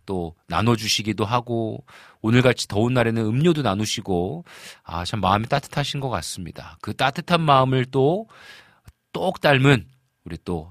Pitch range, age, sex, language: 95-140 Hz, 40-59, male, Korean